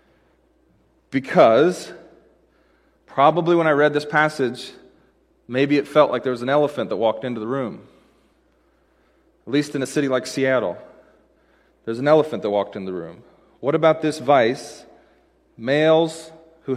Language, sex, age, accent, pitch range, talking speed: English, male, 30-49, American, 130-155 Hz, 145 wpm